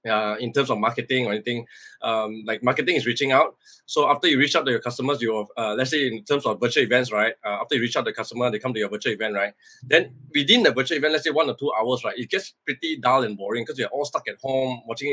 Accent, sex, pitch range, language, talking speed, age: Malaysian, male, 120-145 Hz, English, 280 wpm, 20-39